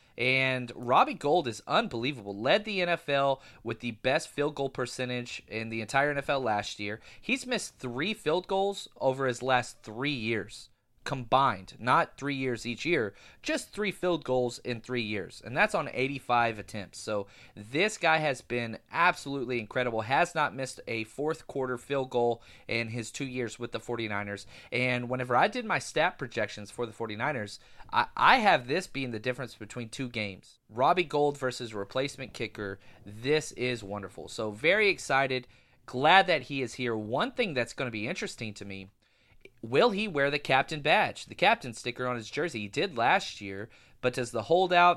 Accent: American